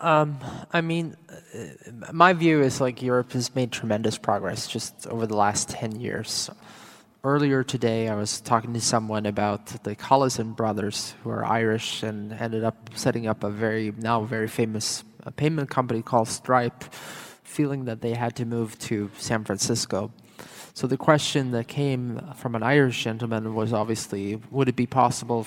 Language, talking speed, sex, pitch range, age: English, 170 wpm, male, 110-130 Hz, 20-39